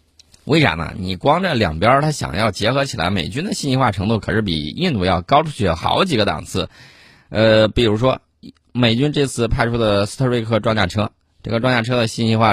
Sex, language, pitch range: male, Chinese, 95-120 Hz